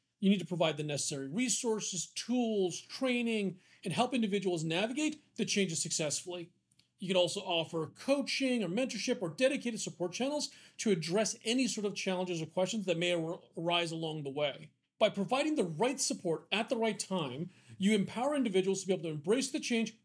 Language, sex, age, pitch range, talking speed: English, male, 40-59, 170-220 Hz, 180 wpm